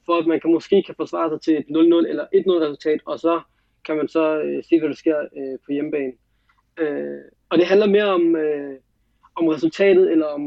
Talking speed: 220 wpm